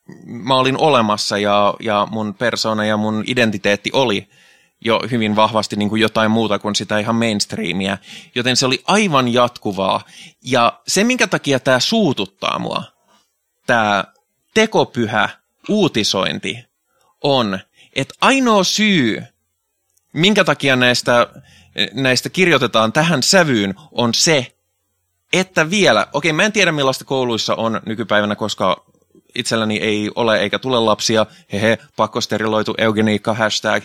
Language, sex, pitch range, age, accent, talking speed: Finnish, male, 105-130 Hz, 20-39, native, 125 wpm